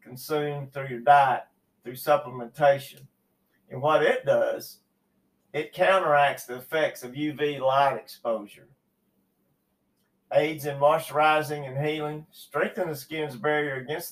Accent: American